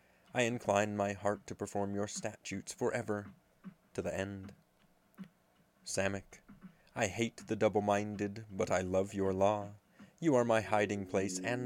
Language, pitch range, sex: English, 100-110 Hz, male